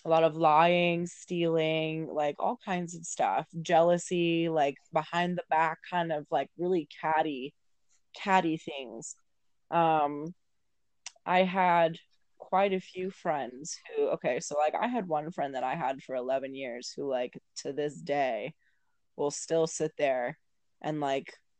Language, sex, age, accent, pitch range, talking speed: English, female, 20-39, American, 145-175 Hz, 150 wpm